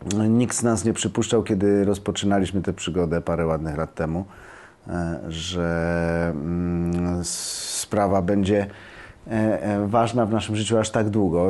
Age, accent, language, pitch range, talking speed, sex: 30-49, native, Polish, 90-110 Hz, 120 wpm, male